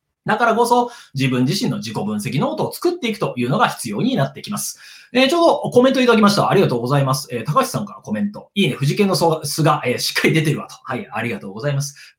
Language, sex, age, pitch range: Japanese, male, 20-39, 145-235 Hz